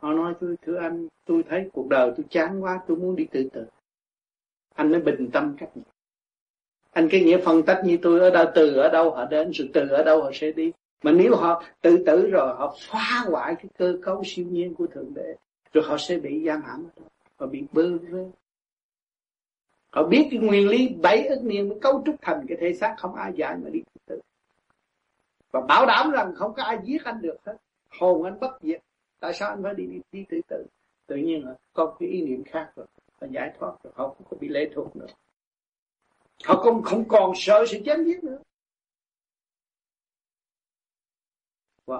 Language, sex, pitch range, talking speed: Vietnamese, male, 165-275 Hz, 210 wpm